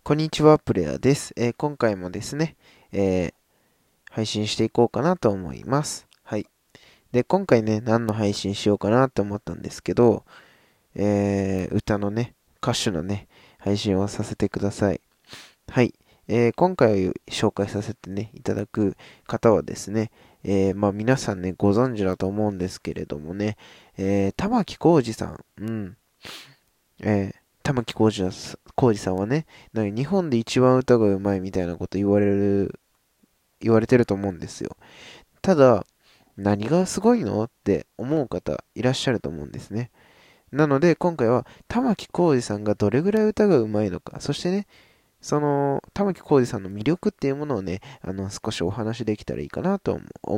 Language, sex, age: Japanese, male, 20-39